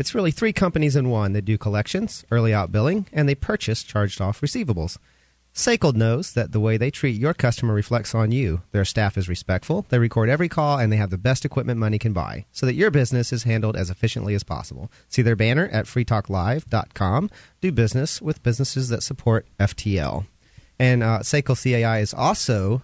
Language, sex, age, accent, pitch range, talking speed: English, male, 40-59, American, 105-130 Hz, 195 wpm